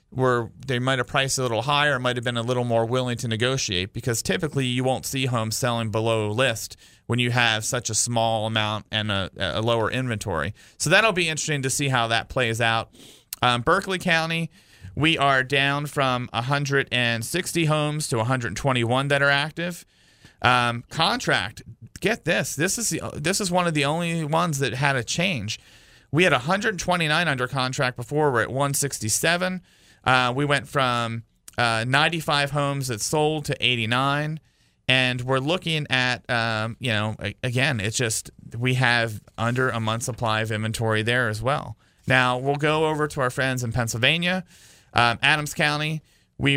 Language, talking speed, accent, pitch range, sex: English, 175 wpm, American, 115-150 Hz, male